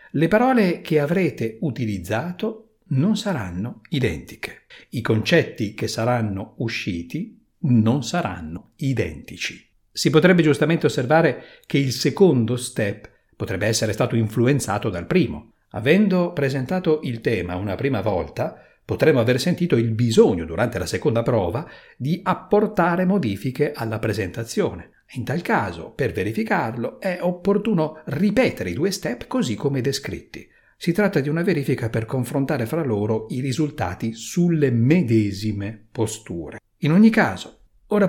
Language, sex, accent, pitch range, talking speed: Italian, male, native, 115-175 Hz, 130 wpm